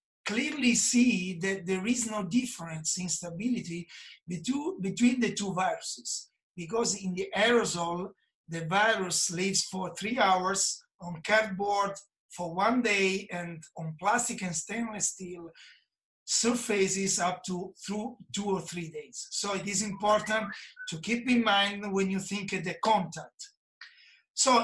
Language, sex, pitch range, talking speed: Persian, male, 180-225 Hz, 140 wpm